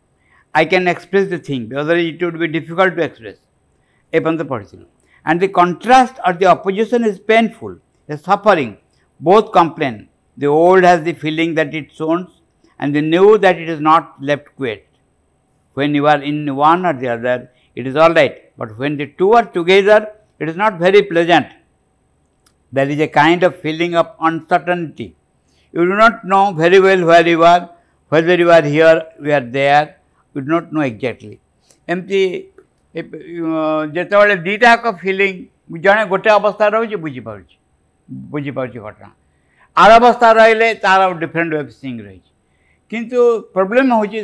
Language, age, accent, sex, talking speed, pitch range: English, 60-79, Indian, male, 155 wpm, 140-195 Hz